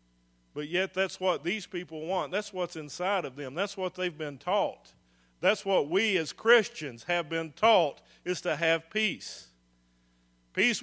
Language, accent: English, American